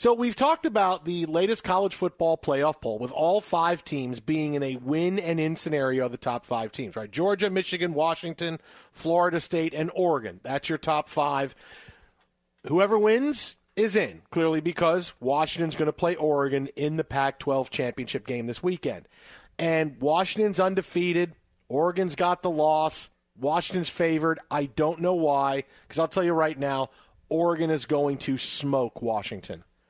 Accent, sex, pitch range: American, male, 145-180 Hz